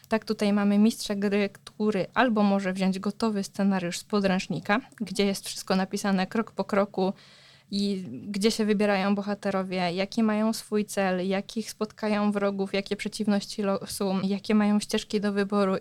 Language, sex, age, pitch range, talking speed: Polish, female, 20-39, 190-220 Hz, 150 wpm